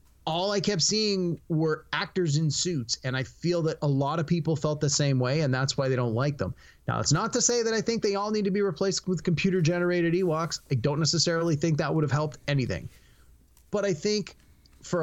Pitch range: 135-175 Hz